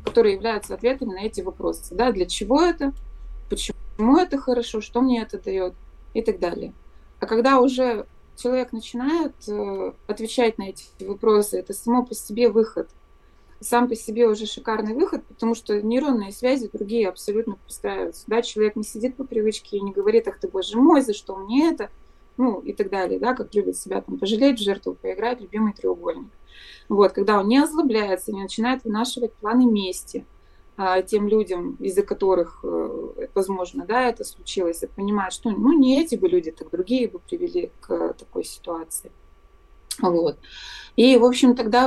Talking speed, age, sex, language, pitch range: 170 wpm, 20-39, female, Russian, 200-250 Hz